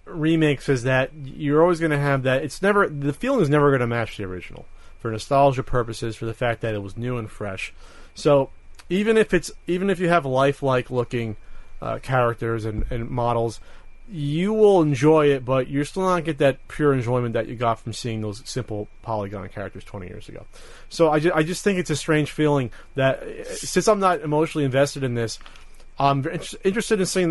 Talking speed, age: 200 wpm, 30-49